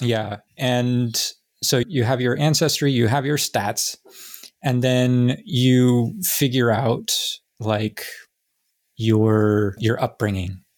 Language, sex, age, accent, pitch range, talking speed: English, male, 30-49, American, 110-125 Hz, 110 wpm